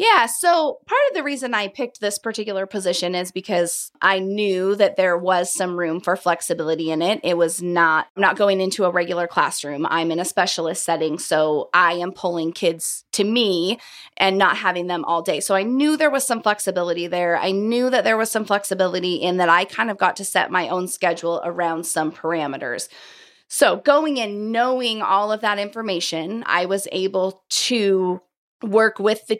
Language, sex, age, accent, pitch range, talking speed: English, female, 30-49, American, 175-215 Hz, 195 wpm